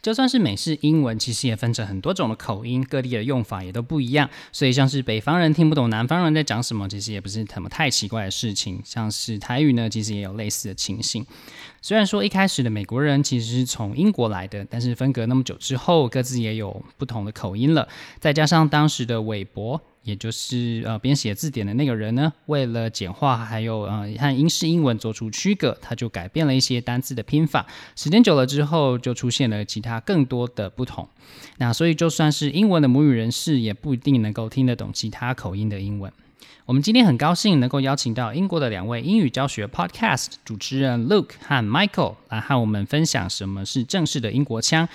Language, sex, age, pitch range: Chinese, male, 20-39, 110-150 Hz